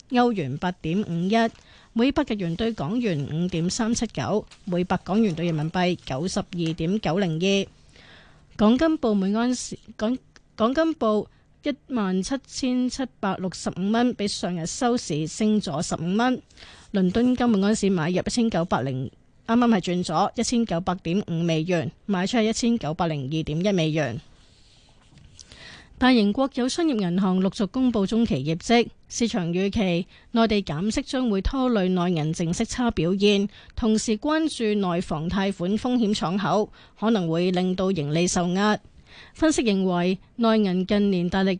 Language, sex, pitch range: Chinese, female, 175-230 Hz